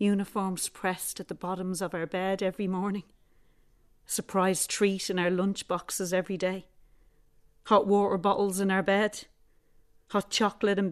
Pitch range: 180-215 Hz